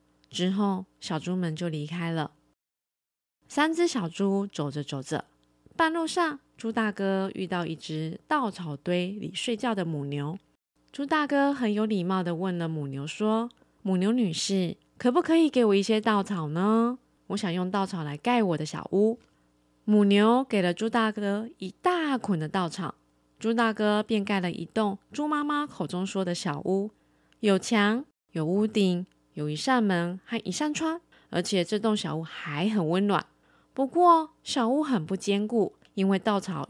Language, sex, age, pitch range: Chinese, female, 20-39, 170-240 Hz